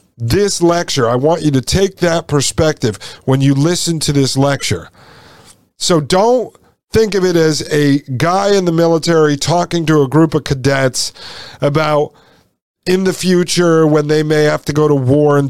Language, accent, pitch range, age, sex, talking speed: English, American, 130-170 Hz, 50-69, male, 175 wpm